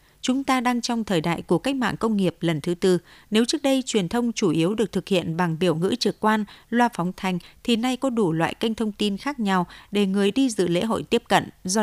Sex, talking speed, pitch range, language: female, 260 wpm, 175-230 Hz, Vietnamese